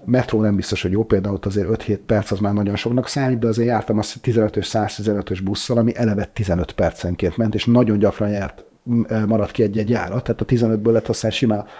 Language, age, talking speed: Hungarian, 30-49, 210 wpm